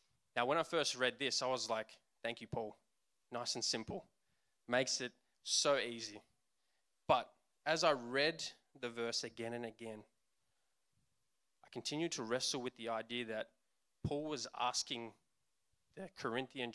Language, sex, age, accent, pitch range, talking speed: English, male, 20-39, Australian, 115-135 Hz, 145 wpm